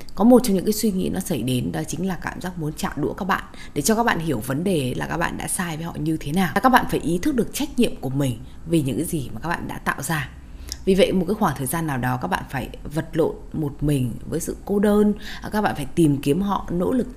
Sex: female